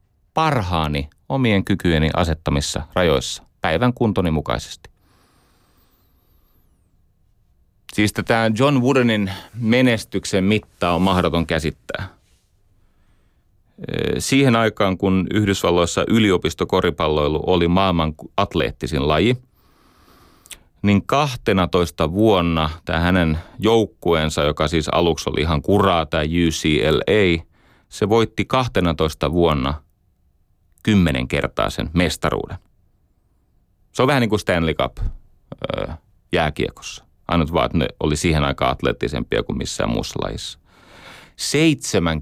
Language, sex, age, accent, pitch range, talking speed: Finnish, male, 30-49, native, 80-105 Hz, 95 wpm